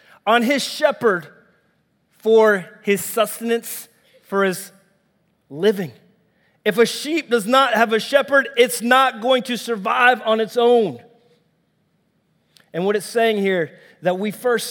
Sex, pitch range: male, 185-240 Hz